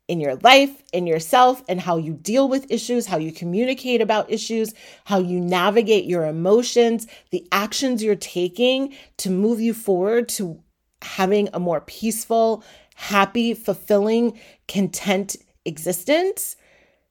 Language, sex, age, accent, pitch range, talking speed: English, female, 30-49, American, 170-230 Hz, 135 wpm